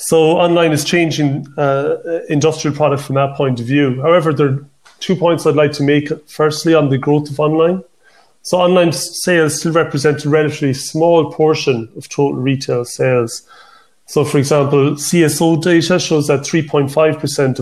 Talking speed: 165 wpm